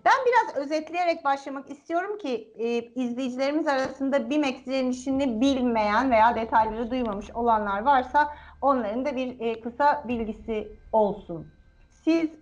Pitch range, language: 225-290 Hz, Turkish